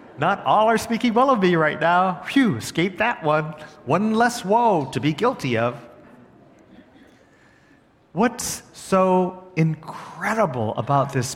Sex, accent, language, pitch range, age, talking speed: male, American, English, 120-180 Hz, 50-69, 130 wpm